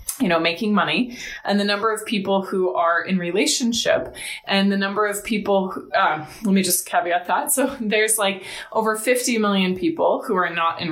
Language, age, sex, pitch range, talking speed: English, 20-39, female, 190-240 Hz, 200 wpm